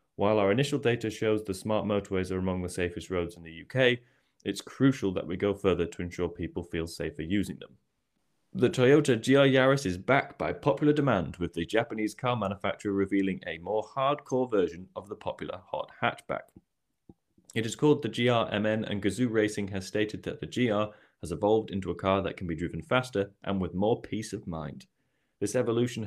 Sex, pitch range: male, 90-115 Hz